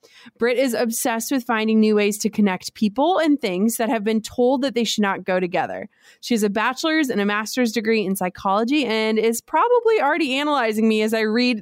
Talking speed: 210 wpm